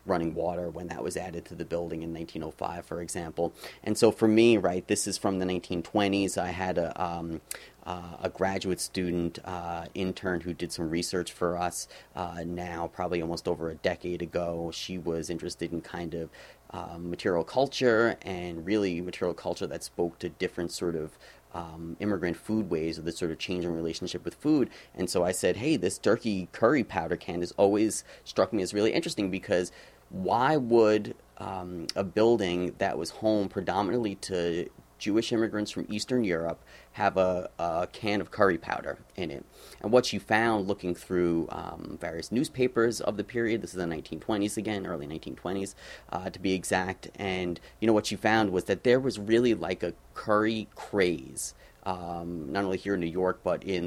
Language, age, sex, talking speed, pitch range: English, 30-49, male, 185 wpm, 85-105 Hz